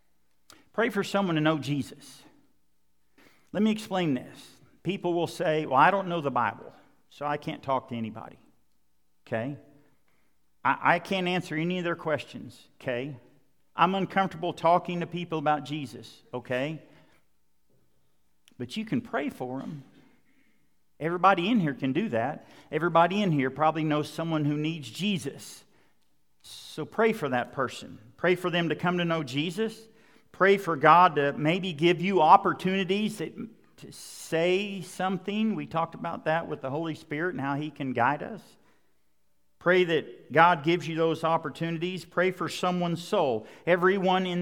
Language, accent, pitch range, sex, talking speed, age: English, American, 135-180 Hz, male, 155 wpm, 50-69